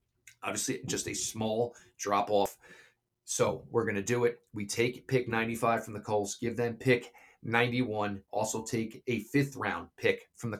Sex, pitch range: male, 100-125 Hz